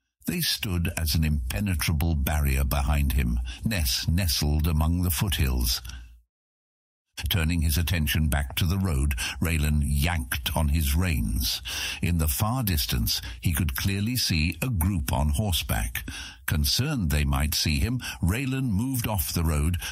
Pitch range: 75-100 Hz